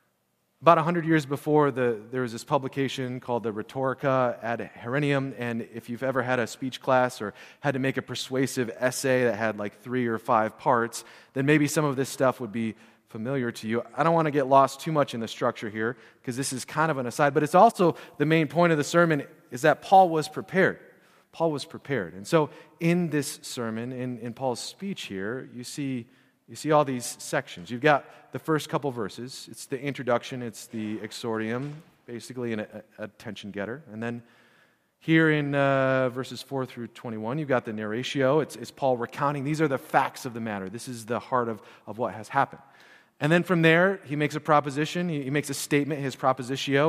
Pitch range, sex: 120-150 Hz, male